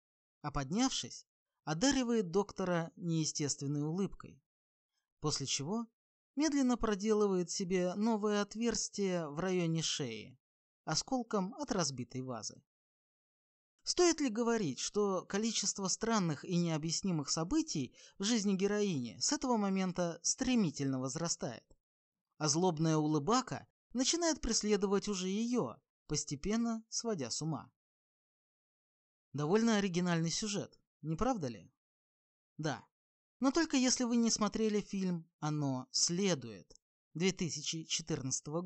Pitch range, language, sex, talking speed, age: 155-225 Hz, Russian, male, 100 wpm, 20-39